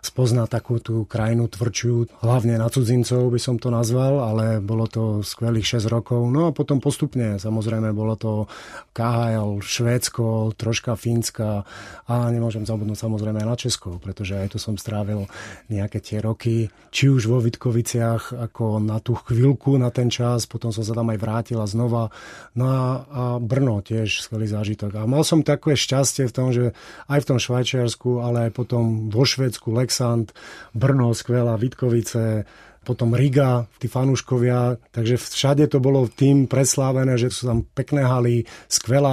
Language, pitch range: Czech, 110-125 Hz